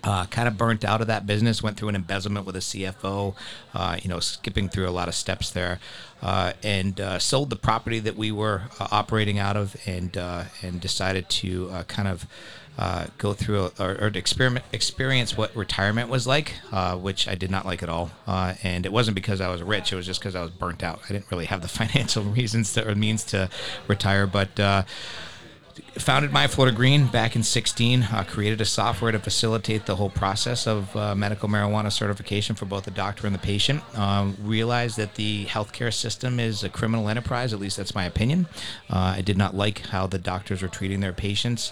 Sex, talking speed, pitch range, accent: male, 220 wpm, 95-110 Hz, American